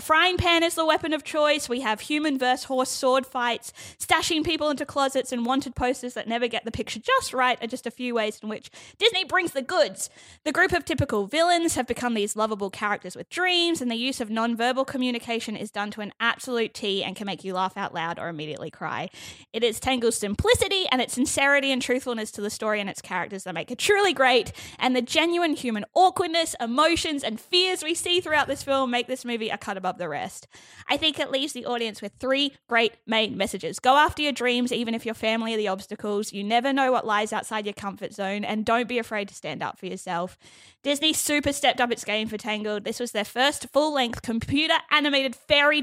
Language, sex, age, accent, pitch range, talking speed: English, female, 20-39, Australian, 210-275 Hz, 225 wpm